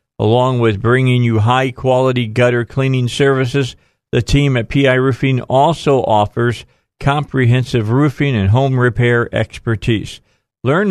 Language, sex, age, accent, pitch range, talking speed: English, male, 50-69, American, 110-130 Hz, 120 wpm